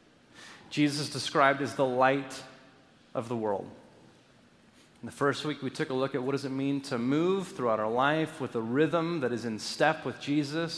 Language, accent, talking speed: English, American, 195 wpm